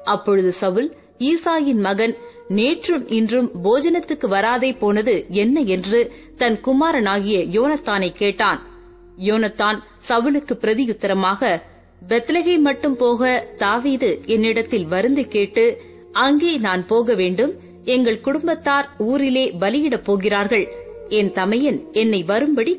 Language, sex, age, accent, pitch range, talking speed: Tamil, female, 30-49, native, 210-275 Hz, 95 wpm